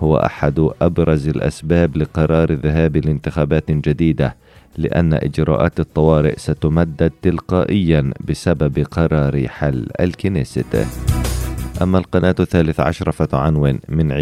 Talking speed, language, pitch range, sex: 95 wpm, Arabic, 75-85 Hz, male